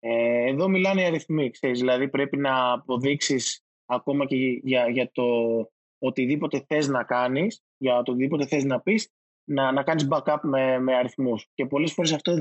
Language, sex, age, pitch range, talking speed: Greek, male, 20-39, 120-150 Hz, 170 wpm